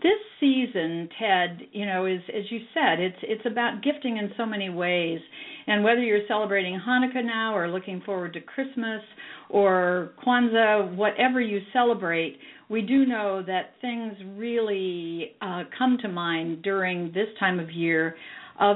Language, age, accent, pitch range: English, 50-69, American, 180-240 Hz